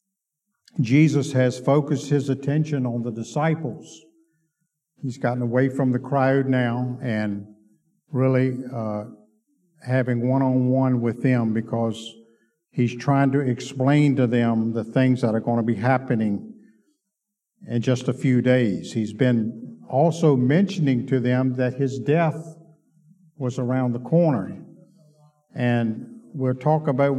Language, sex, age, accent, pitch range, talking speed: English, male, 50-69, American, 125-150 Hz, 130 wpm